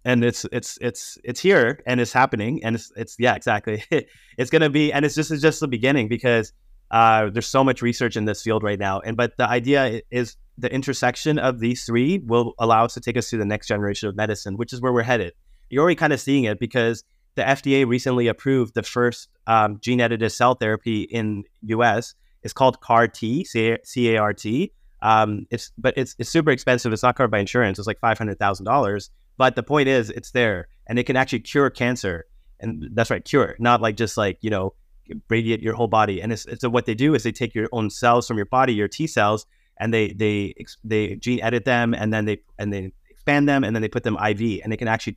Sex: male